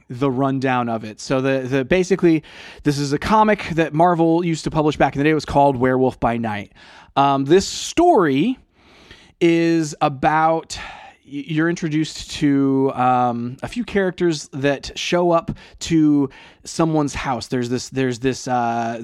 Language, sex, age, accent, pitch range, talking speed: English, male, 20-39, American, 130-155 Hz, 160 wpm